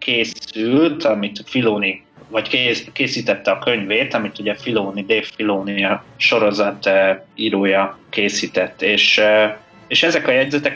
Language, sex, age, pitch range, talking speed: Hungarian, male, 20-39, 100-130 Hz, 130 wpm